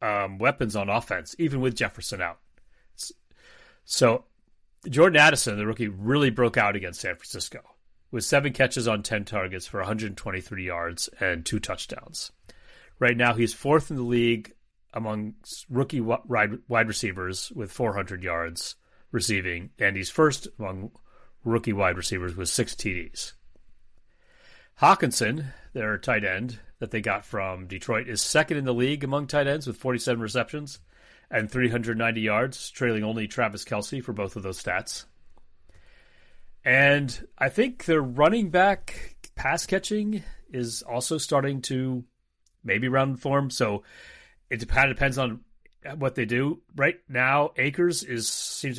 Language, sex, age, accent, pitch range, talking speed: English, male, 30-49, American, 100-135 Hz, 145 wpm